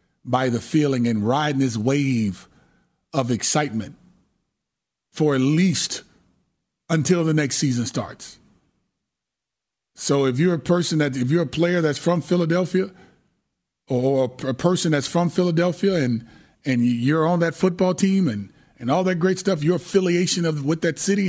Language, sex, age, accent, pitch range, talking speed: English, male, 30-49, American, 130-175 Hz, 155 wpm